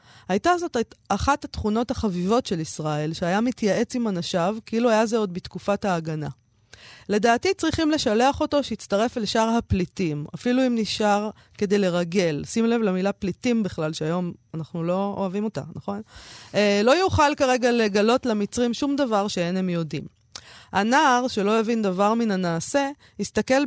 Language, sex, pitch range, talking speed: Hebrew, female, 170-235 Hz, 150 wpm